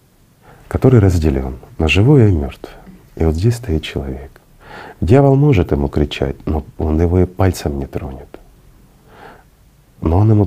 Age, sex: 40-59, male